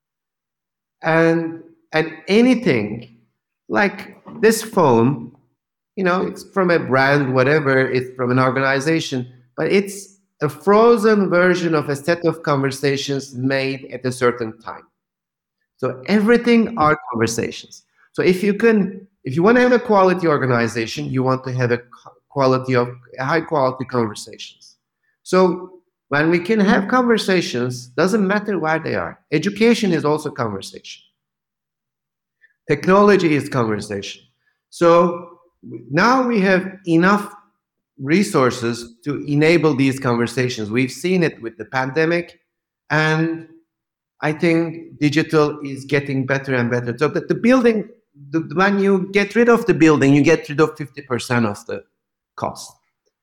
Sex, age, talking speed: male, 50-69, 135 wpm